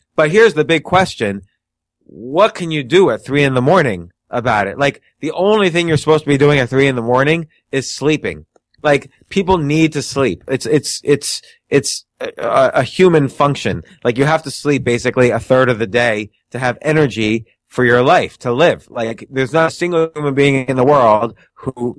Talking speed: 205 wpm